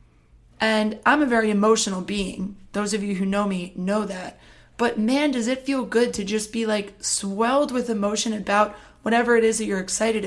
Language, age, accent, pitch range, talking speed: English, 20-39, American, 190-230 Hz, 200 wpm